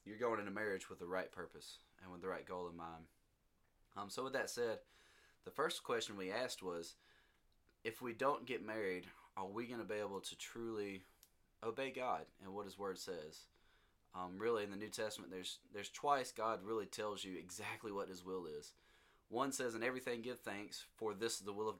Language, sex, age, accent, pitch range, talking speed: English, male, 20-39, American, 90-105 Hz, 210 wpm